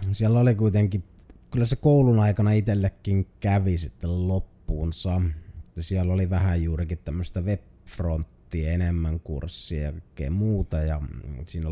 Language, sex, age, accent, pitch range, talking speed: Finnish, male, 30-49, native, 85-95 Hz, 125 wpm